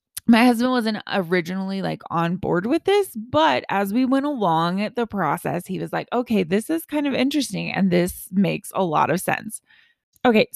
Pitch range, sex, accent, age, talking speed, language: 185-265 Hz, female, American, 20-39, 195 wpm, English